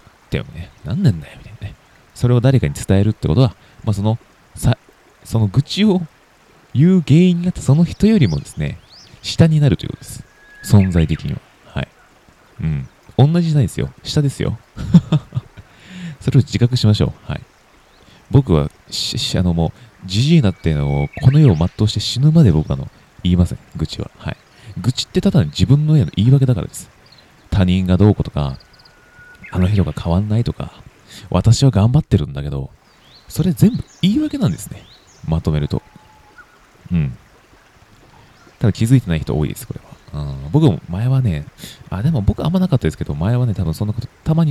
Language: Japanese